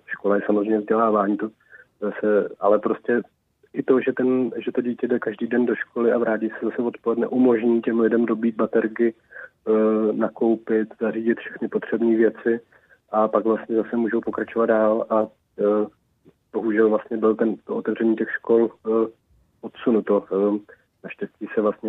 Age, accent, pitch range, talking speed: 30-49, native, 105-115 Hz, 160 wpm